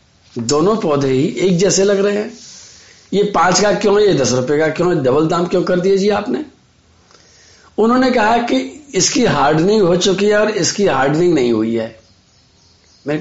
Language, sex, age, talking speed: Hindi, male, 50-69, 185 wpm